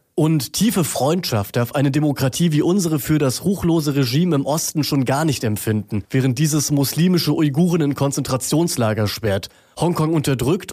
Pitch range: 125-165 Hz